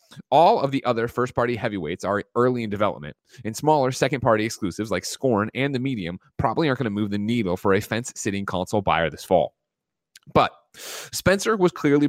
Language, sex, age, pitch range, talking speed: English, male, 30-49, 105-145 Hz, 185 wpm